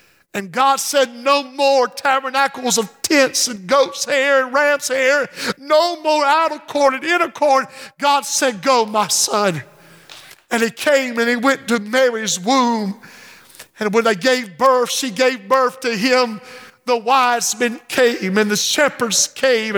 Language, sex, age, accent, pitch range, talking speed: English, male, 50-69, American, 240-295 Hz, 165 wpm